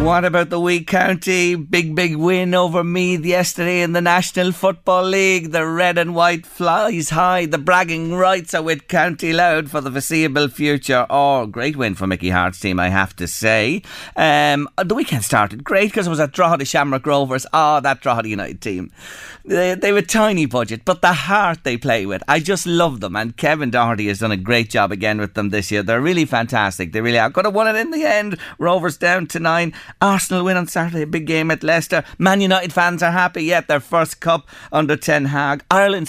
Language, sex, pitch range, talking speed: English, male, 135-175 Hz, 215 wpm